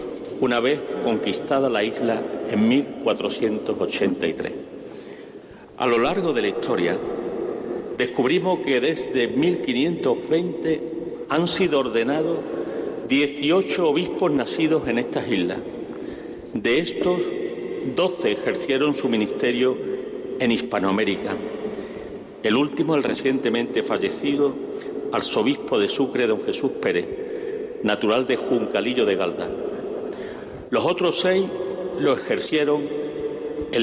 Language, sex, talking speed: Spanish, male, 100 wpm